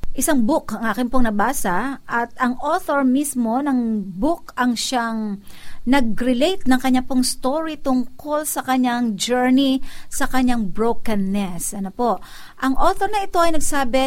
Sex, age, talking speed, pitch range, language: female, 50-69, 135 wpm, 225-270 Hz, Filipino